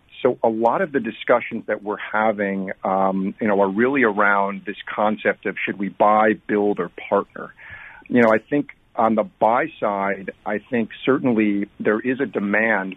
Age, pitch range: 40-59, 100-110 Hz